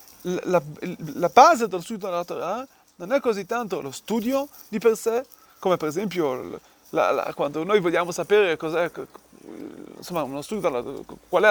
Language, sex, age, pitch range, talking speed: Italian, male, 30-49, 180-255 Hz, 170 wpm